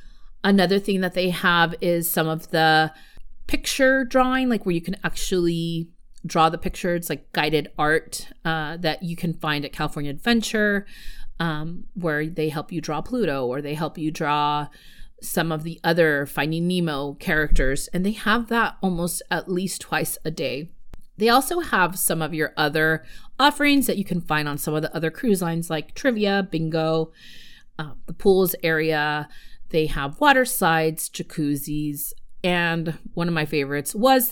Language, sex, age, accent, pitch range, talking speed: English, female, 30-49, American, 155-200 Hz, 170 wpm